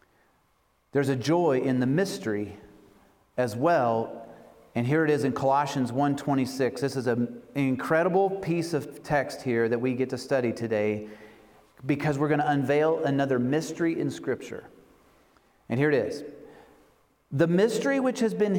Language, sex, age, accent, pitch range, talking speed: English, male, 40-59, American, 135-170 Hz, 155 wpm